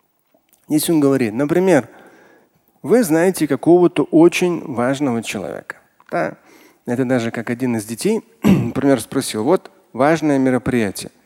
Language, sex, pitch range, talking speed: Russian, male, 130-185 Hz, 110 wpm